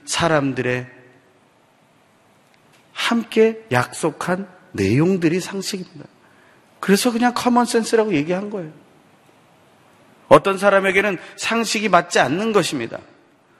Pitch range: 150-210 Hz